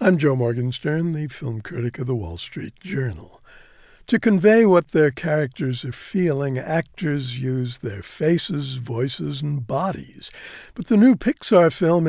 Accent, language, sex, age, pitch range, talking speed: American, English, male, 60-79, 130-170 Hz, 150 wpm